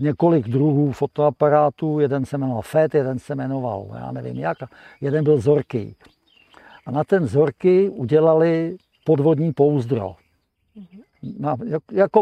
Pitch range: 135-160 Hz